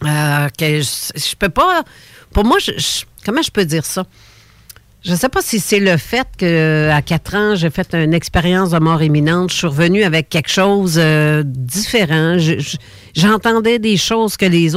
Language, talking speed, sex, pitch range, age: French, 190 wpm, female, 145-190 Hz, 50-69